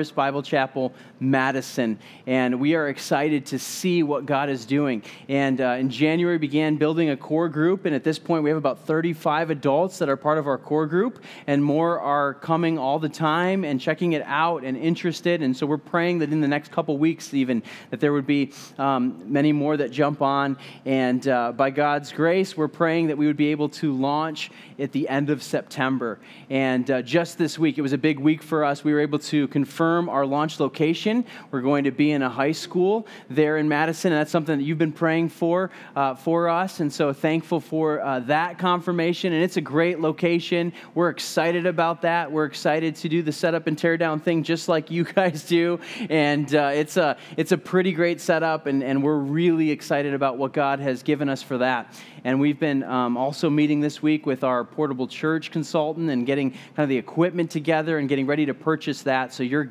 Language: English